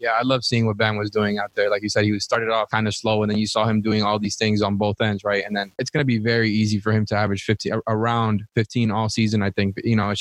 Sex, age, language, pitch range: male, 20-39, English, 105-115 Hz